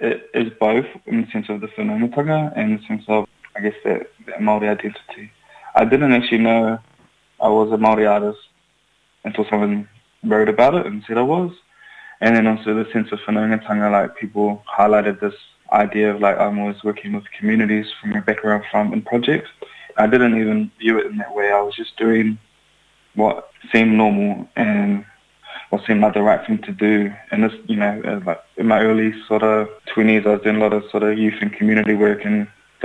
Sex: male